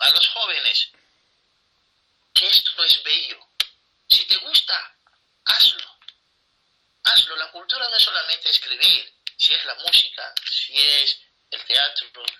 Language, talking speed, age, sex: Spanish, 125 wpm, 50-69, male